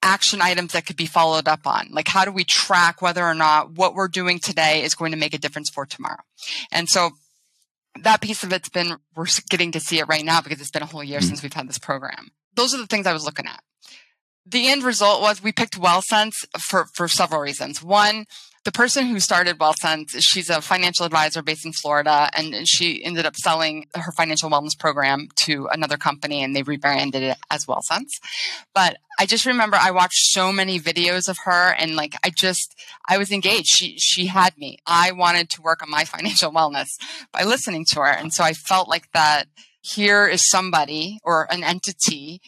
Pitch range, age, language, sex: 155-195 Hz, 20-39, English, female